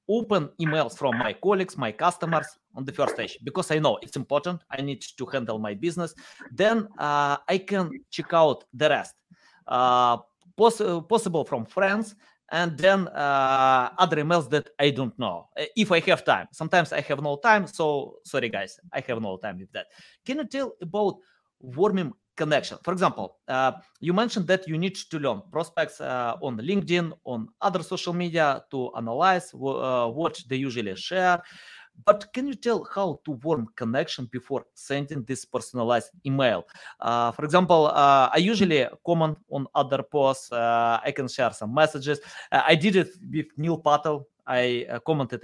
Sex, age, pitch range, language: male, 30-49, 130-180 Hz, English